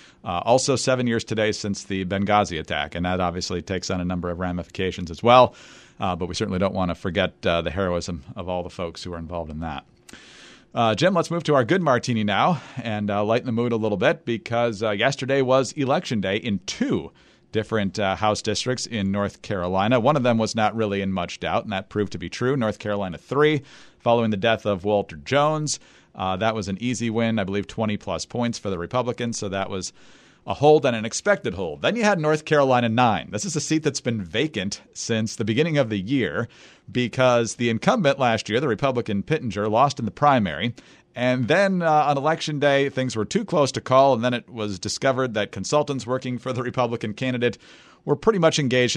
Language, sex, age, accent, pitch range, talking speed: English, male, 40-59, American, 105-135 Hz, 215 wpm